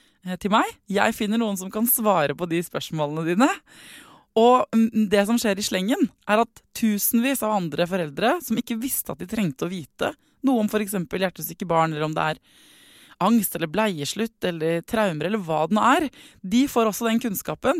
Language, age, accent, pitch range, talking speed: English, 20-39, Swedish, 170-225 Hz, 190 wpm